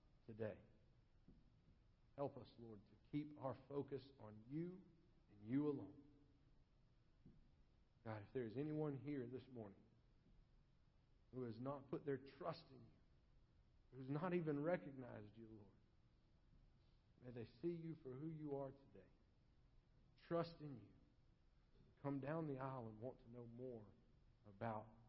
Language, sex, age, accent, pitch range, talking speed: English, male, 50-69, American, 115-145 Hz, 135 wpm